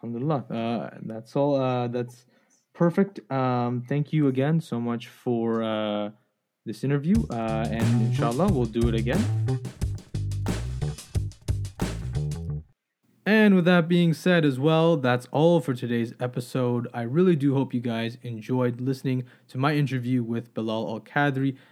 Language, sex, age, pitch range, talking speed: English, male, 20-39, 115-145 Hz, 135 wpm